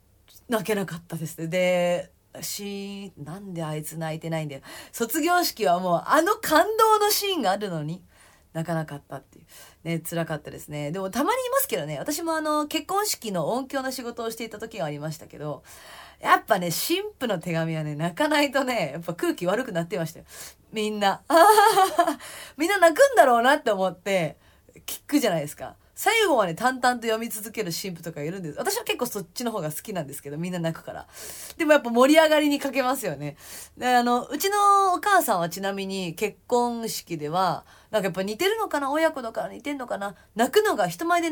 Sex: female